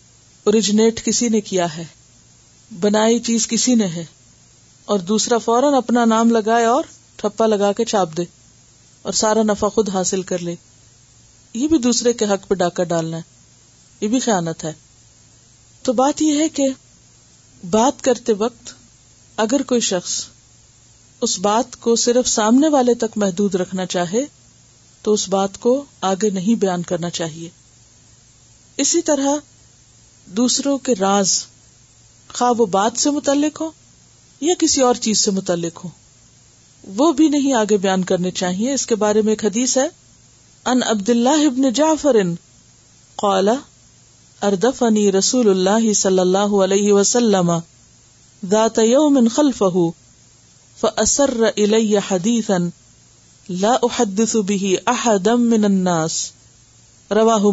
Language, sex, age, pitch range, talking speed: Urdu, female, 40-59, 180-240 Hz, 135 wpm